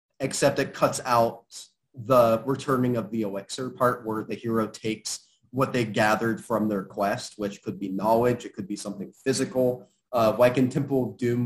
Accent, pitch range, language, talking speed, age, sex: American, 105-125 Hz, English, 185 wpm, 30-49, male